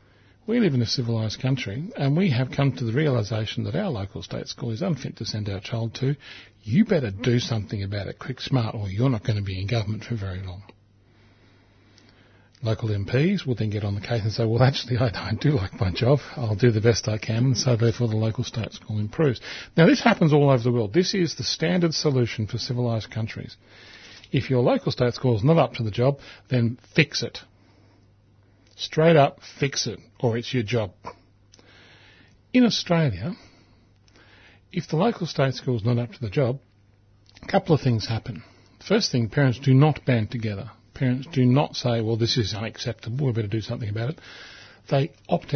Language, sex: English, male